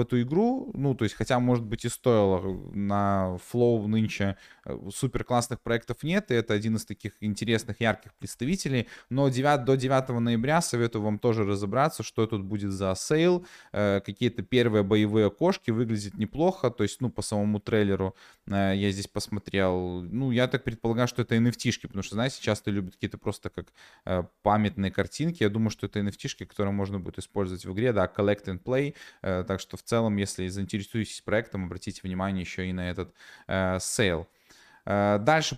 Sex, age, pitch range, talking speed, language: male, 20-39, 100-125 Hz, 180 wpm, Russian